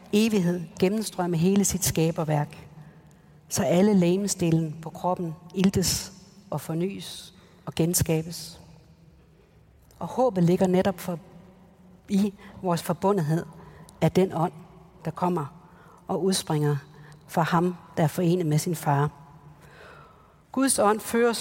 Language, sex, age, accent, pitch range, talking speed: Danish, female, 60-79, native, 165-190 Hz, 110 wpm